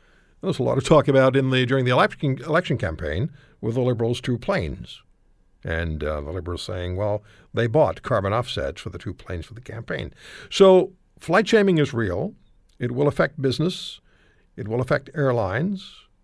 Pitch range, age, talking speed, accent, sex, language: 115-165 Hz, 60-79, 175 wpm, American, male, English